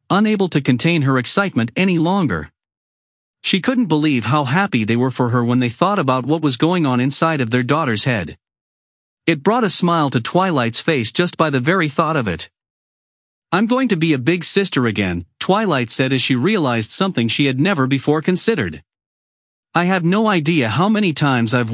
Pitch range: 115-175 Hz